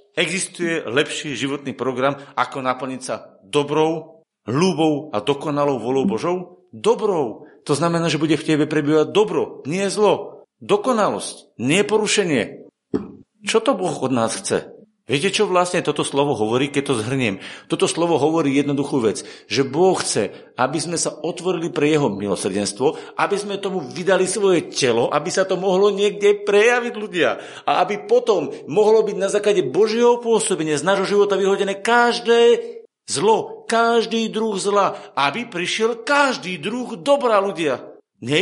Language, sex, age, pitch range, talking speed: Slovak, male, 50-69, 160-225 Hz, 150 wpm